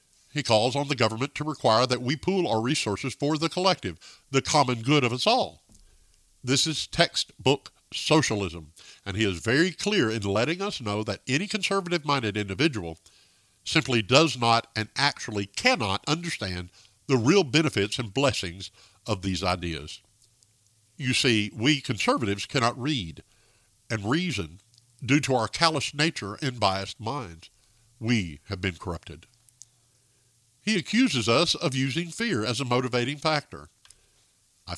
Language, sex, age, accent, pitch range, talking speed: English, male, 50-69, American, 105-145 Hz, 145 wpm